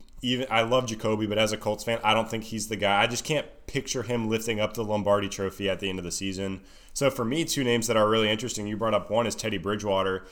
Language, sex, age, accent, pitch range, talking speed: English, male, 20-39, American, 100-115 Hz, 275 wpm